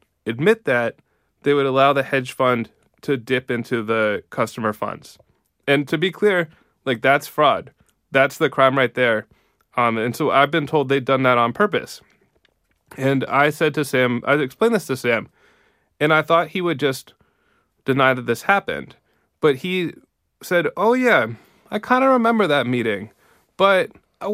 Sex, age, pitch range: male, 20-39, 130-175 Hz